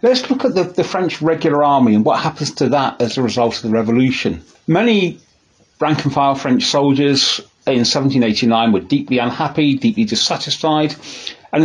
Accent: British